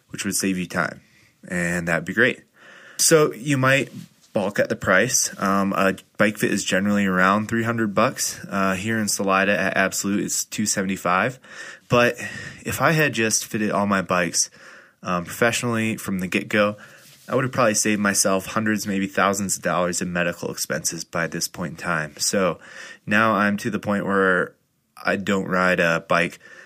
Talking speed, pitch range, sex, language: 175 wpm, 95-110 Hz, male, English